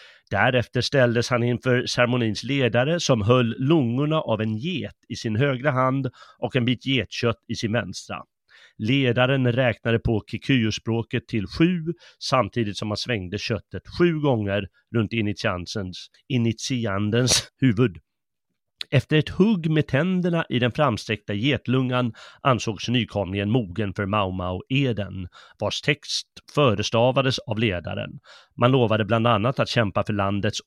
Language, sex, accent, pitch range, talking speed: Swedish, male, native, 105-135 Hz, 135 wpm